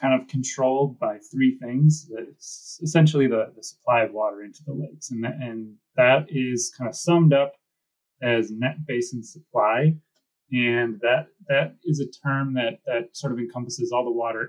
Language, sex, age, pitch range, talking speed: English, male, 30-49, 115-155 Hz, 170 wpm